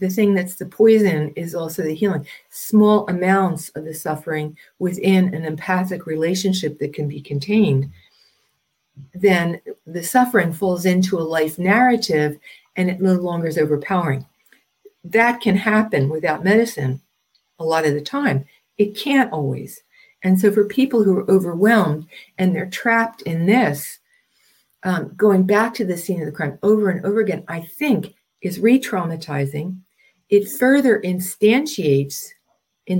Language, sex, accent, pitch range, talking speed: English, female, American, 165-215 Hz, 150 wpm